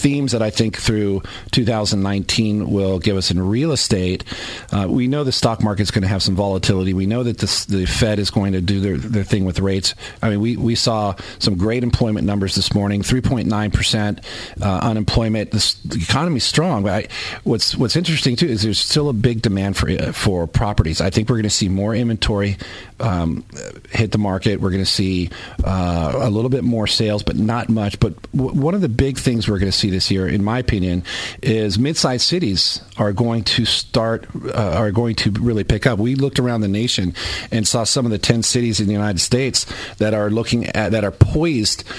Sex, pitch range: male, 100-120 Hz